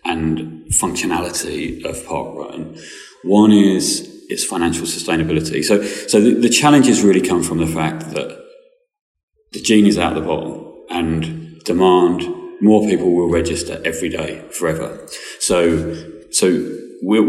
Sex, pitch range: male, 85-105 Hz